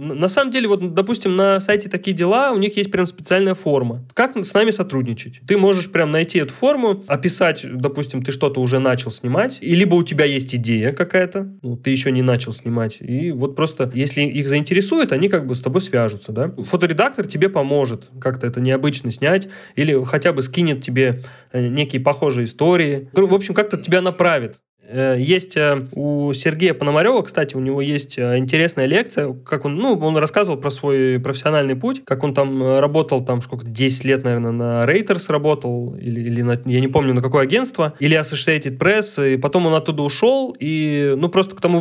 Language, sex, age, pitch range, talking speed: Russian, male, 20-39, 130-180 Hz, 190 wpm